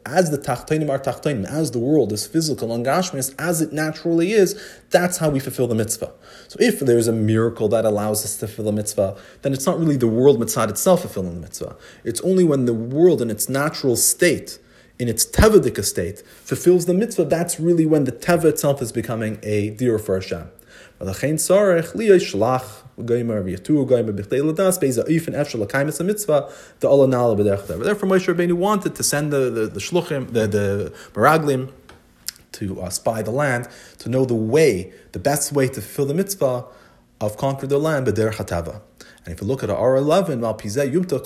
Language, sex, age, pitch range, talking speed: English, male, 30-49, 110-155 Hz, 160 wpm